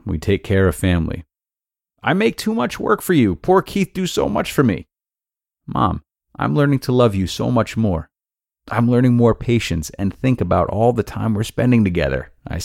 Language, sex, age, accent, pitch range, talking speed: English, male, 30-49, American, 85-120 Hz, 200 wpm